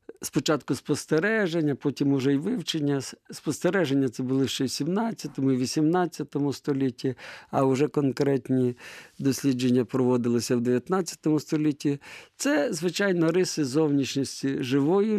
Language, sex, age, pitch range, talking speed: Ukrainian, male, 50-69, 130-165 Hz, 110 wpm